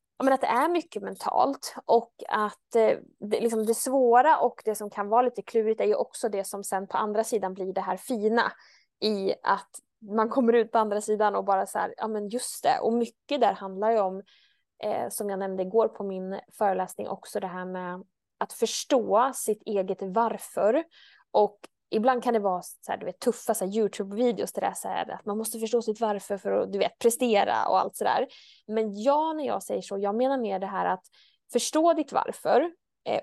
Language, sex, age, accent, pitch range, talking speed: Swedish, female, 20-39, Norwegian, 200-240 Hz, 215 wpm